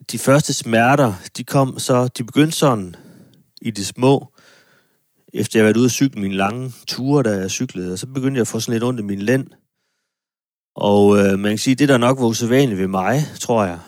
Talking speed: 220 wpm